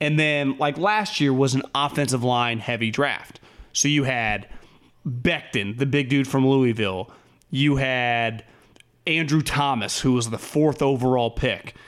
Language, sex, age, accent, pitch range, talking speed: English, male, 30-49, American, 130-165 Hz, 150 wpm